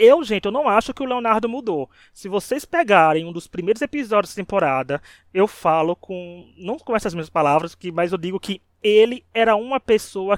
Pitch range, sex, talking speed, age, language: 170-220 Hz, male, 195 wpm, 20-39, Portuguese